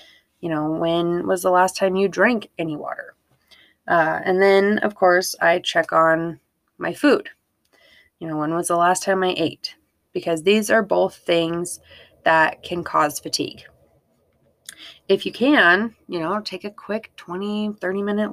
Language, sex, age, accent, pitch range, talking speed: English, female, 20-39, American, 165-195 Hz, 160 wpm